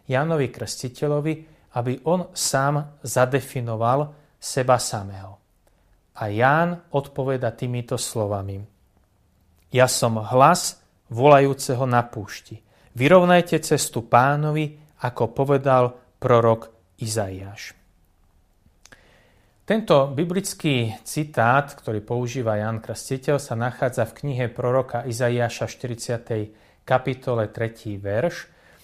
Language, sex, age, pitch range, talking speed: Slovak, male, 30-49, 115-150 Hz, 90 wpm